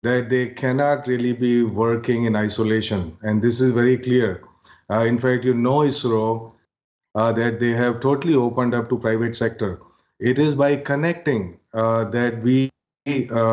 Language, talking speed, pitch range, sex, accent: English, 165 wpm, 115-130 Hz, male, Indian